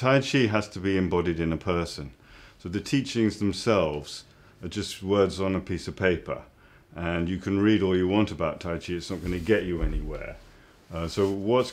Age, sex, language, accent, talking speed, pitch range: 40-59, male, English, British, 210 wpm, 85-105 Hz